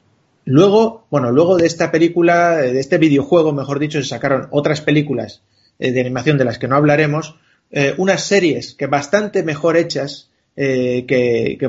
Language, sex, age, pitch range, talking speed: Spanish, male, 30-49, 130-165 Hz, 165 wpm